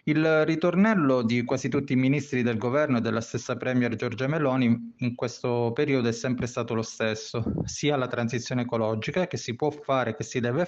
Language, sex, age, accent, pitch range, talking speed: Italian, male, 20-39, native, 115-135 Hz, 190 wpm